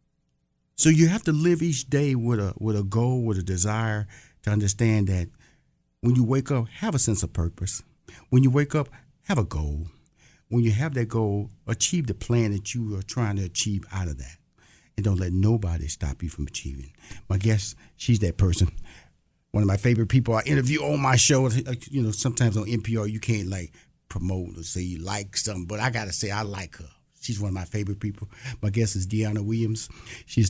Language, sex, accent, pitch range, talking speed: English, male, American, 100-130 Hz, 215 wpm